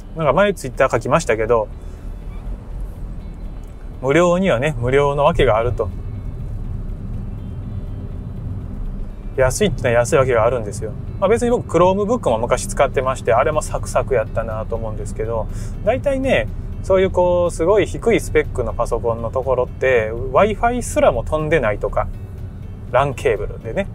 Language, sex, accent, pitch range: Japanese, male, native, 100-150 Hz